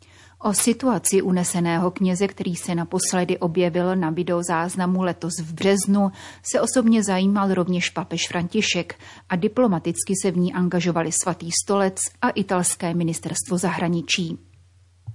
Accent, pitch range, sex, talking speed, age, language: native, 170-195 Hz, female, 125 wpm, 30-49, Czech